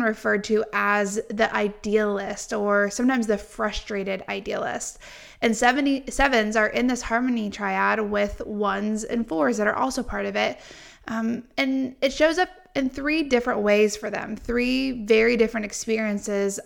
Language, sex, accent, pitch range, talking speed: English, female, American, 205-235 Hz, 155 wpm